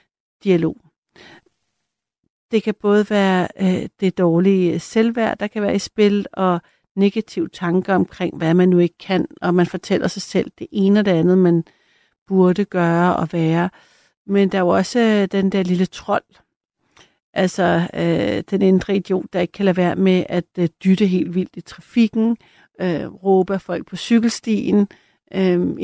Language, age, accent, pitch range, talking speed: Danish, 60-79, native, 175-200 Hz, 165 wpm